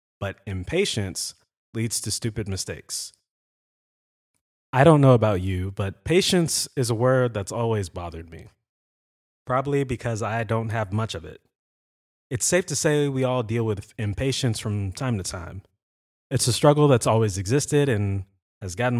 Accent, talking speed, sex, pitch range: American, 160 wpm, male, 100-130 Hz